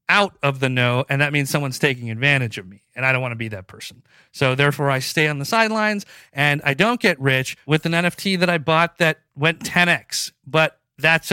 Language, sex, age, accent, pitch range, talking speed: English, male, 40-59, American, 135-170 Hz, 235 wpm